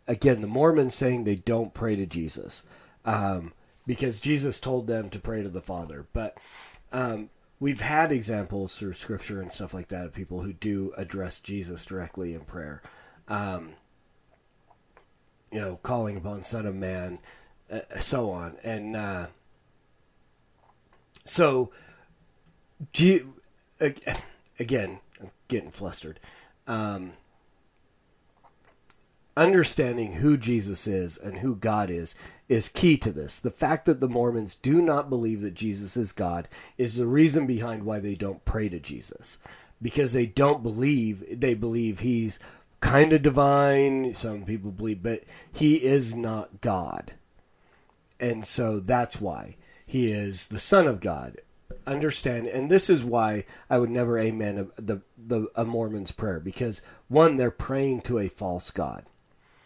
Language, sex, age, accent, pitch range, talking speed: English, male, 40-59, American, 100-130 Hz, 140 wpm